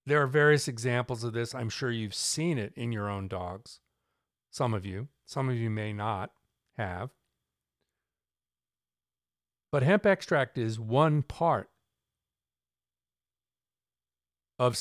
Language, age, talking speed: English, 50-69, 125 wpm